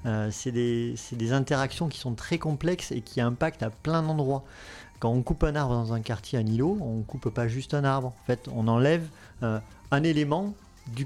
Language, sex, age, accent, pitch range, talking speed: French, male, 40-59, French, 120-160 Hz, 220 wpm